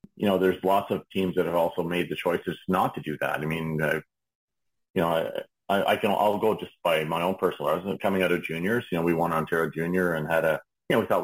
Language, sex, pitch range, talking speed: English, male, 80-95 Hz, 265 wpm